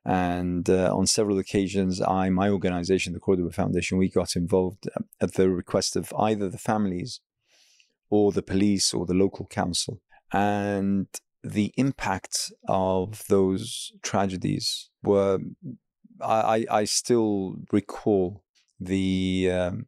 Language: English